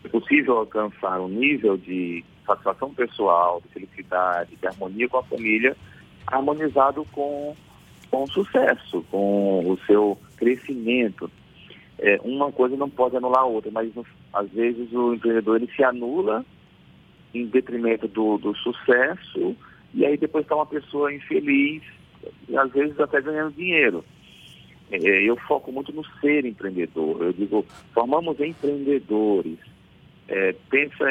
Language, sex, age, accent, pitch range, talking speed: Portuguese, male, 40-59, Brazilian, 105-140 Hz, 140 wpm